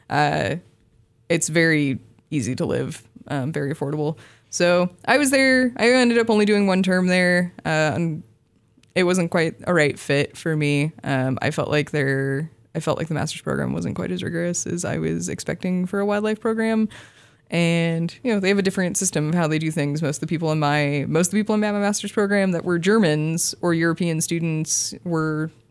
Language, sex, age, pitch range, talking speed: English, female, 20-39, 145-175 Hz, 205 wpm